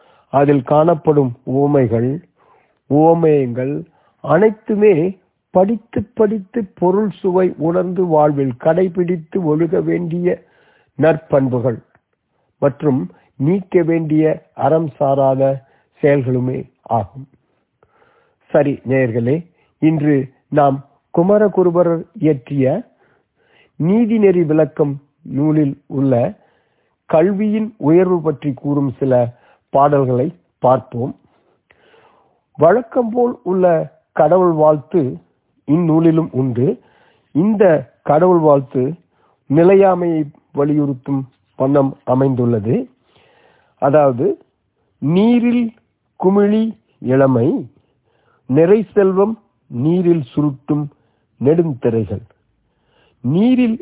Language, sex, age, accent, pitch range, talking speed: Tamil, male, 50-69, native, 135-185 Hz, 60 wpm